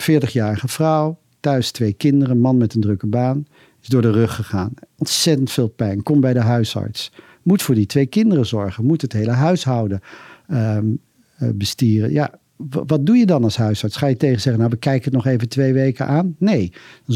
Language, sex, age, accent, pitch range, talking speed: Dutch, male, 50-69, Dutch, 115-150 Hz, 200 wpm